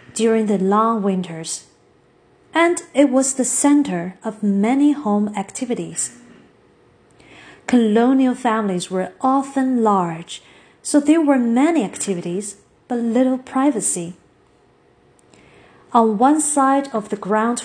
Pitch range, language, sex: 190-255 Hz, Chinese, female